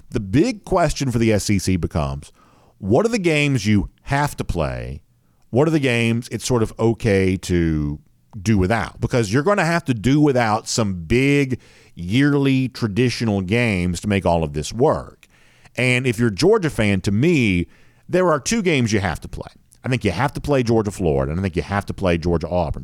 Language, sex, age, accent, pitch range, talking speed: English, male, 50-69, American, 90-115 Hz, 200 wpm